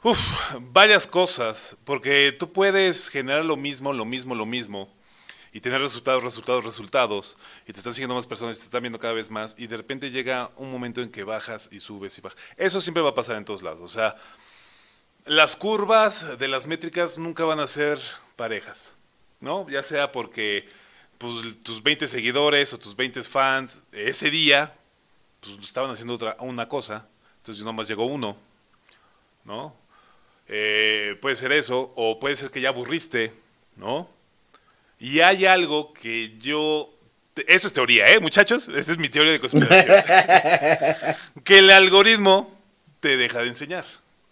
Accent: Mexican